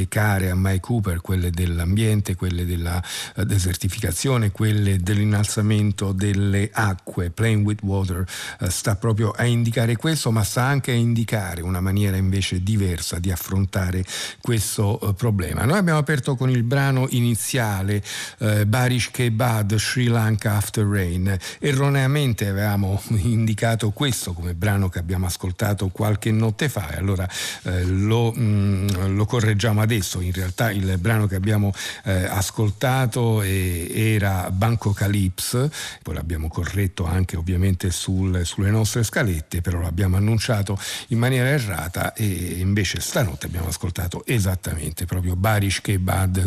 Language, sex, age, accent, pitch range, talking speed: Italian, male, 50-69, native, 95-115 Hz, 140 wpm